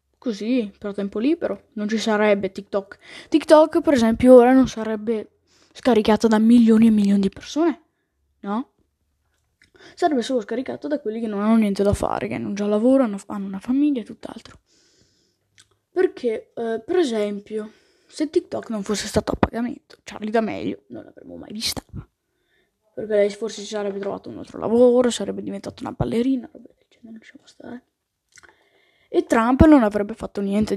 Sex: female